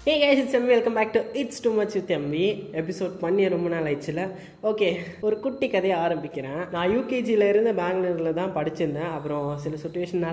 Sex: female